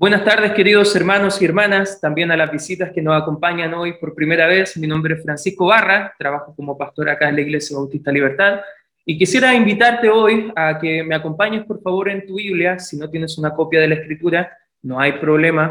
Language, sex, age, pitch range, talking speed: Spanish, male, 20-39, 150-185 Hz, 210 wpm